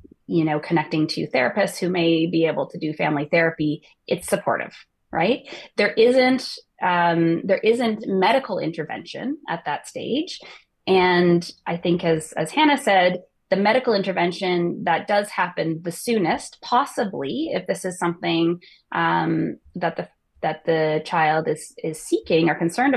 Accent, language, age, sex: American, English, 20-39, female